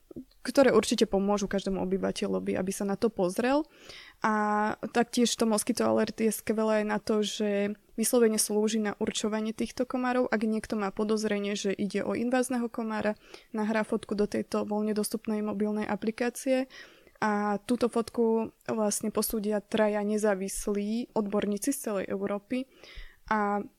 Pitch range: 205-230 Hz